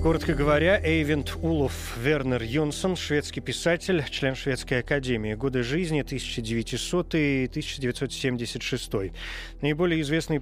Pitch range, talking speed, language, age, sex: 120-150 Hz, 90 wpm, Russian, 30-49, male